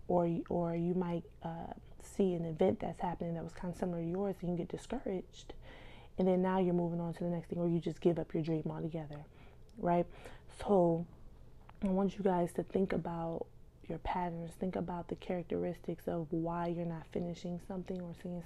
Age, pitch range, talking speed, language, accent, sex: 20-39, 170-190 Hz, 205 wpm, English, American, female